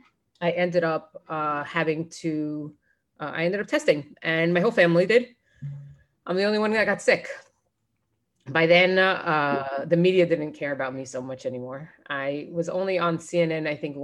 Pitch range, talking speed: 145-180 Hz, 185 wpm